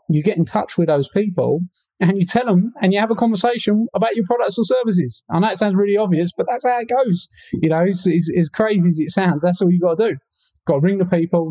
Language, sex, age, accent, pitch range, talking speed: English, male, 30-49, British, 135-180 Hz, 280 wpm